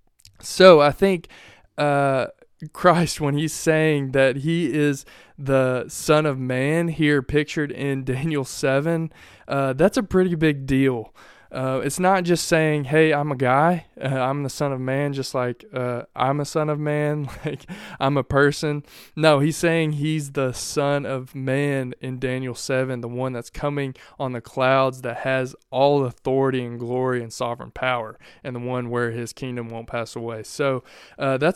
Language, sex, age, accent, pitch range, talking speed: English, male, 20-39, American, 125-150 Hz, 190 wpm